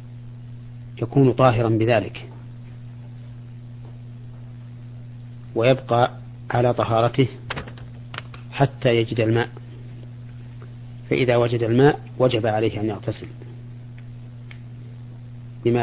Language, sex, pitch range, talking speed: Arabic, male, 115-120 Hz, 65 wpm